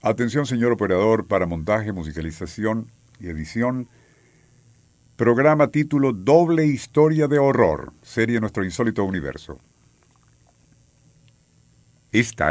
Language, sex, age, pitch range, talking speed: Spanish, male, 50-69, 95-140 Hz, 95 wpm